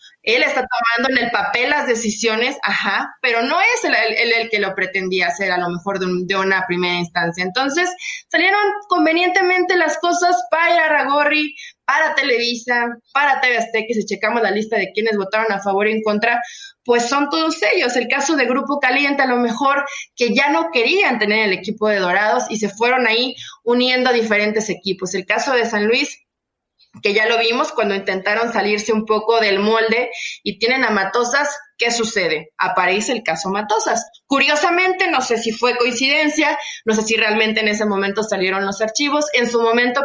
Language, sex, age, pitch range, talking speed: Spanish, female, 20-39, 210-280 Hz, 190 wpm